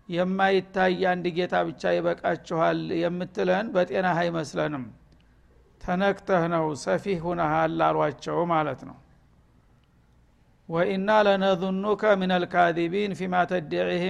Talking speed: 90 wpm